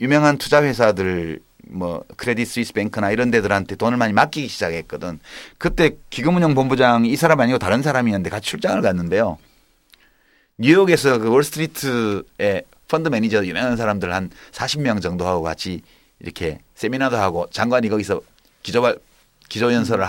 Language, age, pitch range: Korean, 30-49, 100-145 Hz